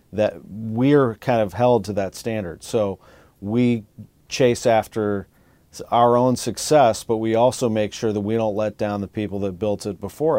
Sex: male